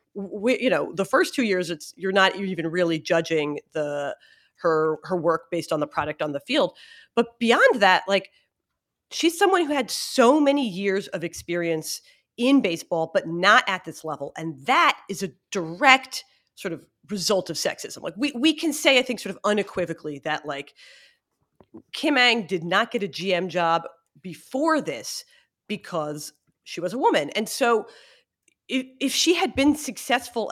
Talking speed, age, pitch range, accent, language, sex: 175 wpm, 30-49, 170-240 Hz, American, English, female